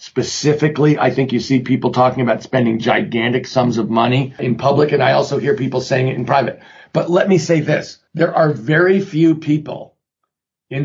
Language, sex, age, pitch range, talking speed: English, male, 50-69, 125-150 Hz, 195 wpm